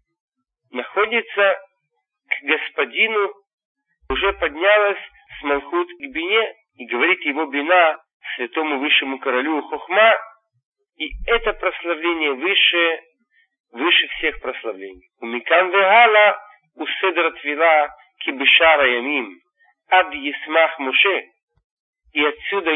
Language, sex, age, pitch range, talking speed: Russian, male, 40-59, 150-220 Hz, 90 wpm